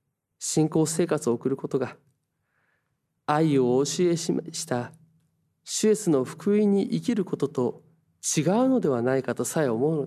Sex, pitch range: male, 135-175 Hz